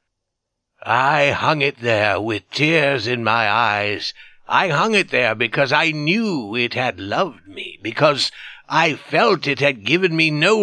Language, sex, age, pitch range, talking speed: English, male, 60-79, 120-165 Hz, 160 wpm